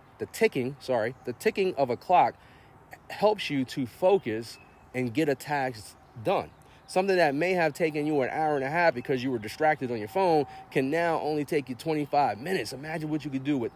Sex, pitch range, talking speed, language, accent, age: male, 125-175 Hz, 210 wpm, English, American, 30-49